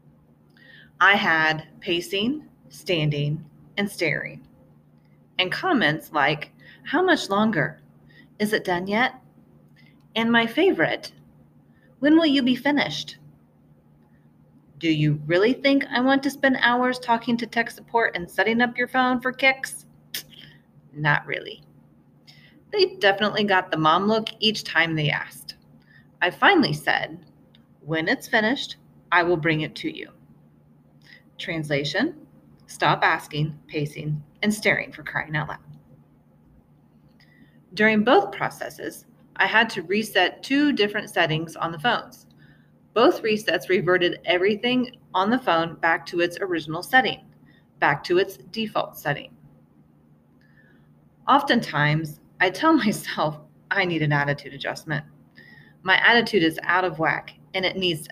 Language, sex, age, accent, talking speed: English, female, 30-49, American, 130 wpm